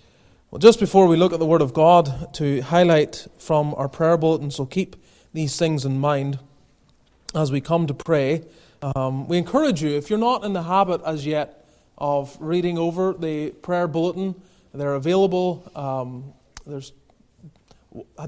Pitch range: 140-180 Hz